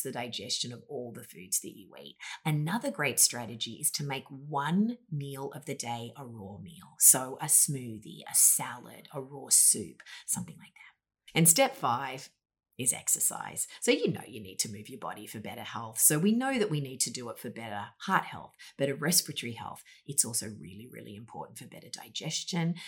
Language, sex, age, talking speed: English, female, 30-49, 195 wpm